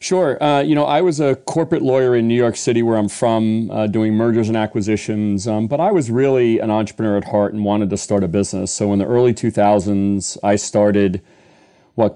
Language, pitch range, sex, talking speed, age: English, 100-115 Hz, male, 215 wpm, 40-59